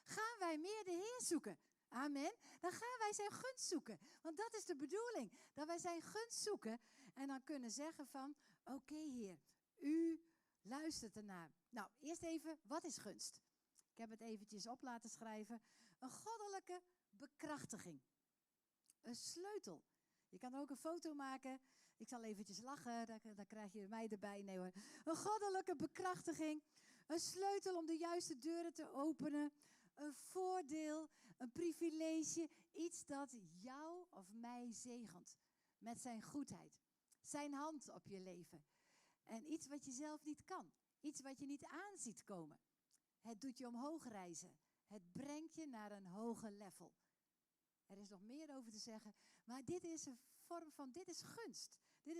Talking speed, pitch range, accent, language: 160 wpm, 230-330 Hz, Dutch, Dutch